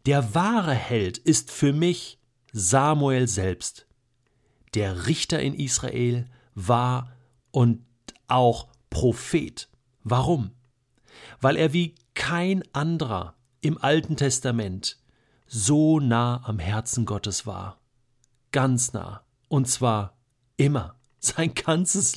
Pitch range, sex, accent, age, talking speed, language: 120-155 Hz, male, German, 50-69, 105 wpm, German